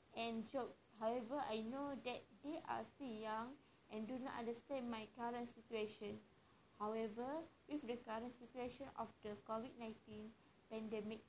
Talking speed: 140 wpm